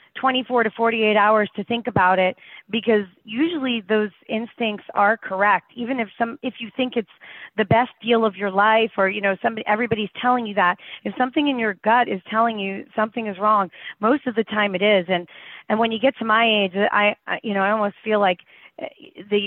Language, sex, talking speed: English, female, 215 wpm